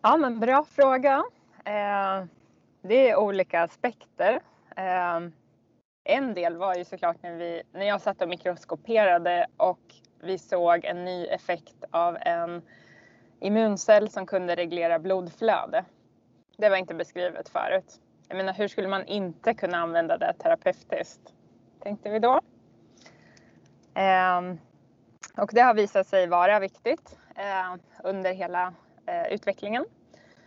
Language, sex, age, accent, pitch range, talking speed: Swedish, female, 20-39, native, 185-225 Hz, 120 wpm